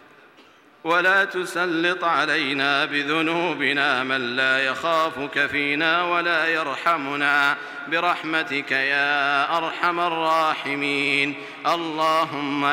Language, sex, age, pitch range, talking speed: Arabic, male, 50-69, 140-165 Hz, 70 wpm